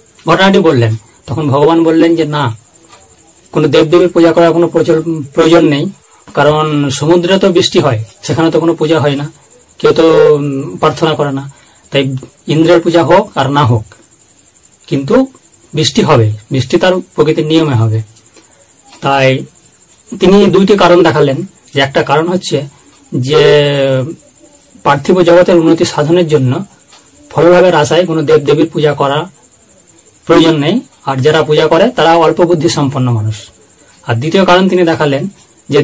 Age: 40-59